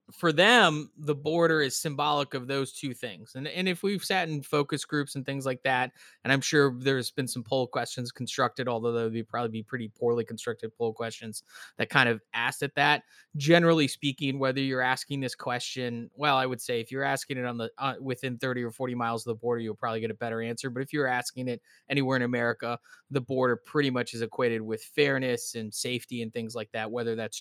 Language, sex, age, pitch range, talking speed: English, male, 20-39, 120-140 Hz, 225 wpm